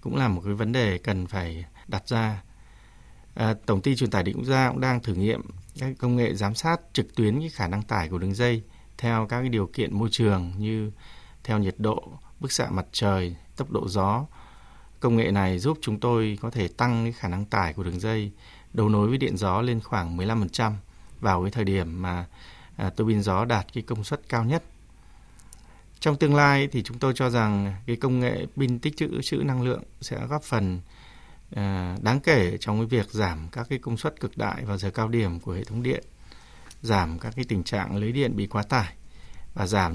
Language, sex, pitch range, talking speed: Vietnamese, male, 95-120 Hz, 215 wpm